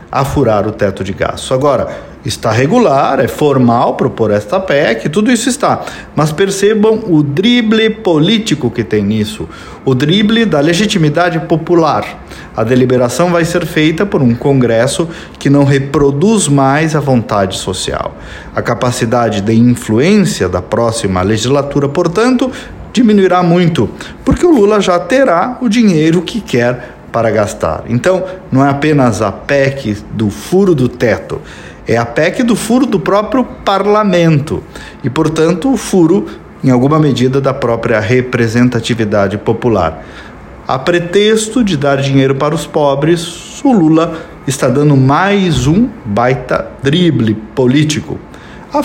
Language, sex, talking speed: Portuguese, male, 140 wpm